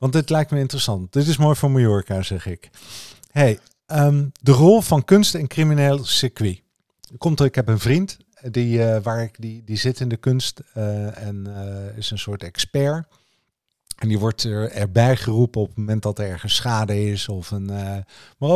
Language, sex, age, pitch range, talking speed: Dutch, male, 50-69, 105-130 Hz, 205 wpm